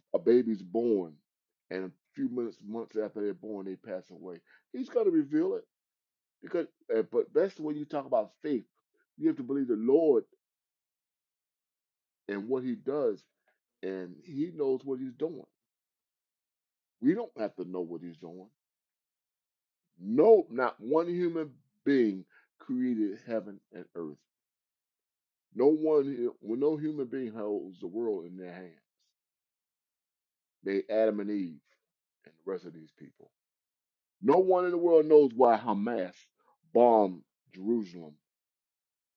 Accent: American